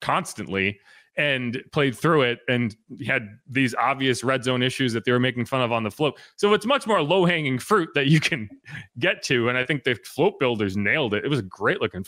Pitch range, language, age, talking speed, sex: 125-190 Hz, English, 30-49, 230 wpm, male